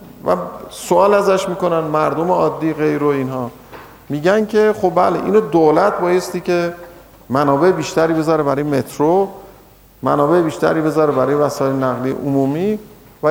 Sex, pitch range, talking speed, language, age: male, 140-200 Hz, 130 wpm, Persian, 50-69